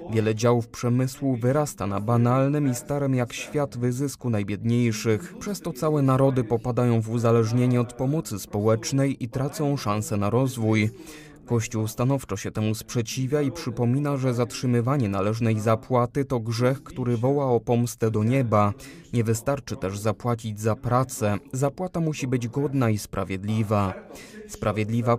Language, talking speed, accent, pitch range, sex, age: Polish, 140 wpm, native, 110-135 Hz, male, 20-39